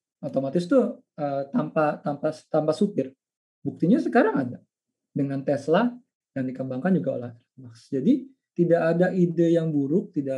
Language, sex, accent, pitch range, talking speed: Indonesian, male, native, 140-205 Hz, 125 wpm